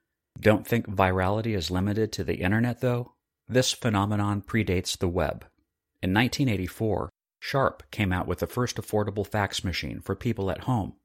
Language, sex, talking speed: English, male, 155 wpm